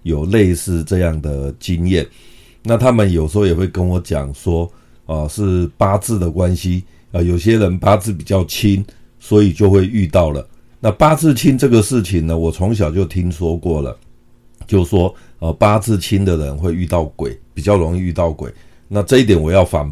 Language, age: Chinese, 50-69